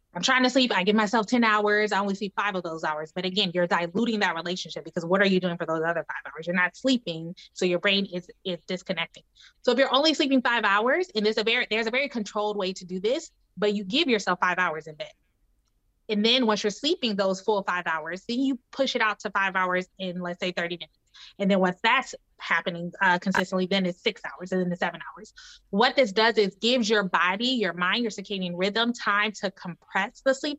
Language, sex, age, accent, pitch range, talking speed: English, female, 20-39, American, 180-230 Hz, 240 wpm